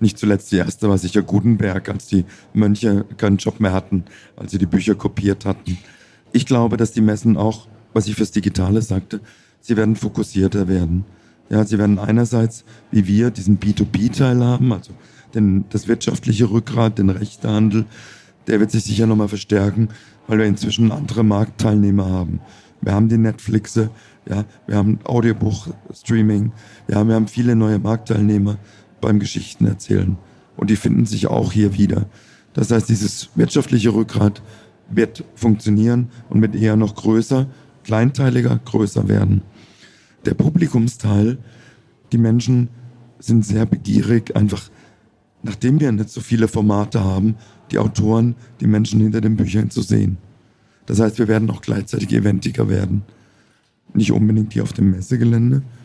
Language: German